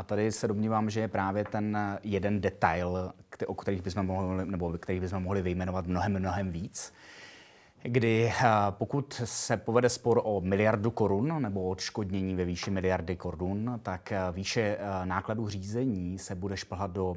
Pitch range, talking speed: 90-100 Hz, 145 wpm